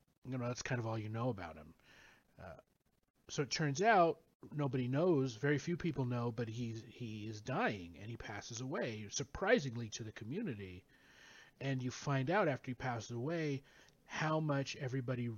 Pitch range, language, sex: 115-140 Hz, English, male